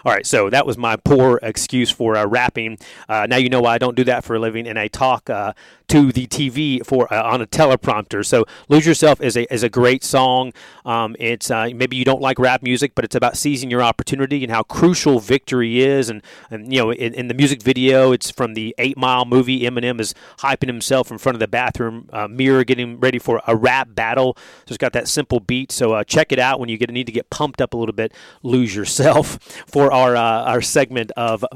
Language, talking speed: English, 240 wpm